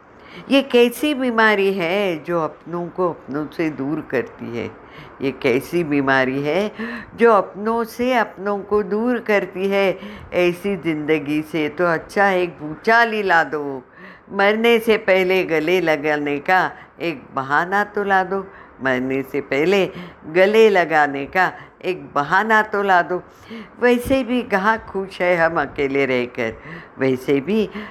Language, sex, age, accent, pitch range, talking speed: Hindi, female, 50-69, native, 155-215 Hz, 140 wpm